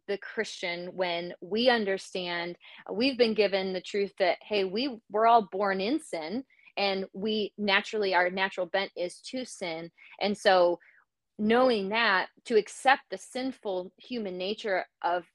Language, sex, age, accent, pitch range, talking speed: English, female, 30-49, American, 180-210 Hz, 150 wpm